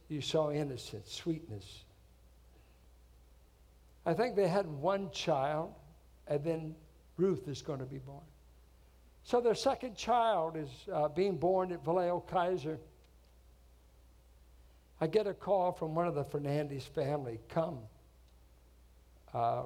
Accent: American